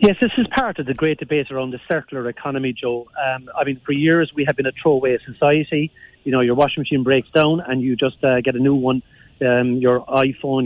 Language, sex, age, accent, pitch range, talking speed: English, male, 40-59, Irish, 130-155 Hz, 235 wpm